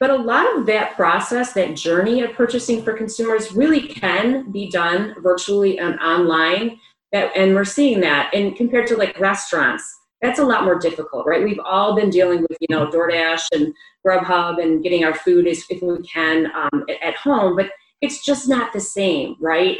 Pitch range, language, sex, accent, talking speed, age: 165-210 Hz, English, female, American, 185 wpm, 30-49